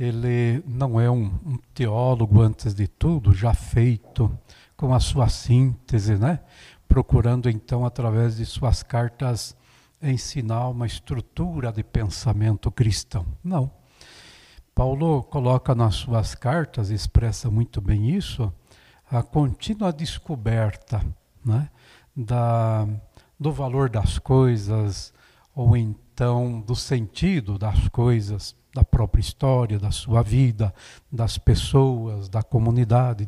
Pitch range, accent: 110-130 Hz, Brazilian